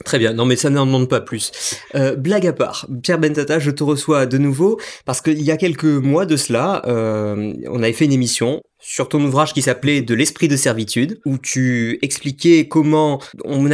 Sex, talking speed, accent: male, 220 wpm, French